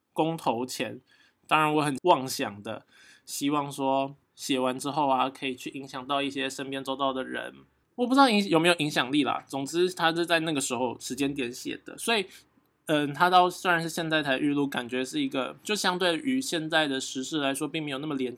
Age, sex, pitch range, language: 20-39, male, 130-160 Hz, Chinese